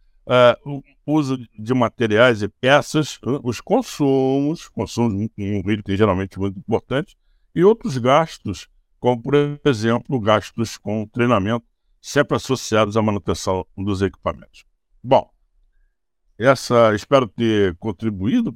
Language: Portuguese